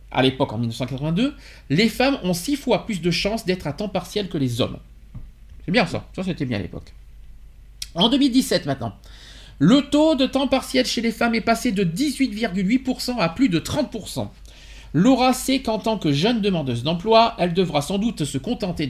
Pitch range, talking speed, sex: 135-205 Hz, 190 wpm, male